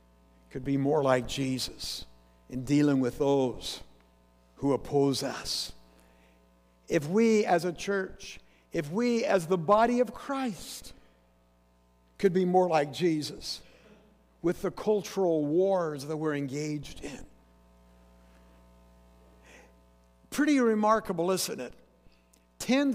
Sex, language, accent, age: male, English, American, 60-79